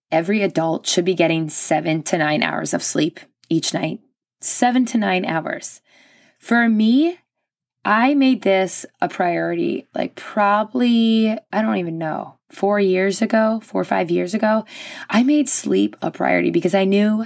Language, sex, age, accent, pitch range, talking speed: English, female, 20-39, American, 175-220 Hz, 160 wpm